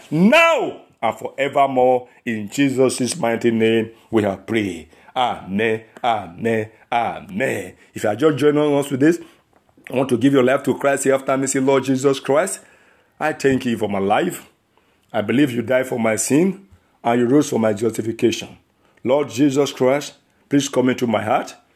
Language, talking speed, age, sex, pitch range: English, 170 wpm, 50-69, male, 110-145 Hz